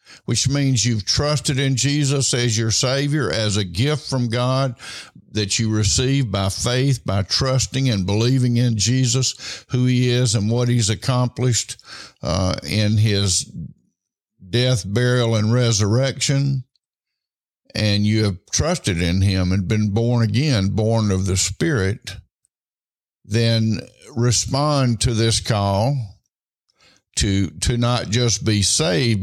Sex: male